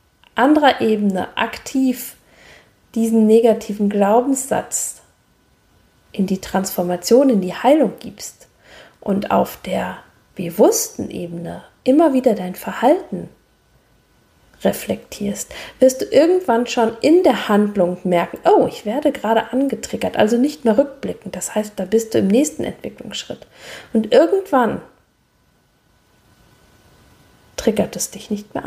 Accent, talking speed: German, 115 wpm